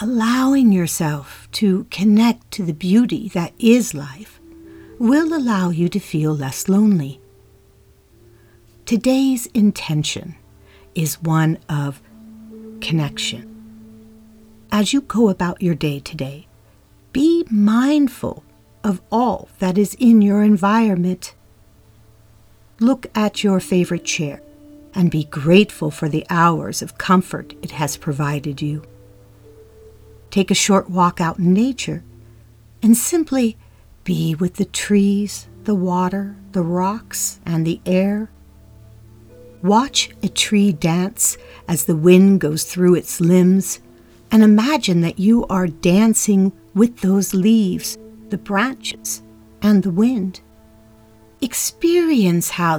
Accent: American